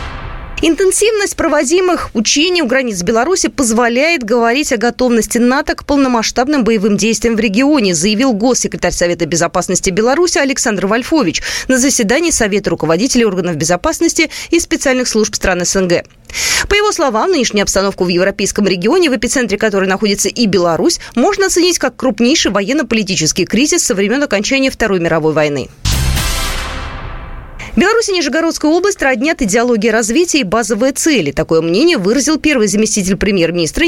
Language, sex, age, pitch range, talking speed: Russian, female, 20-39, 190-295 Hz, 135 wpm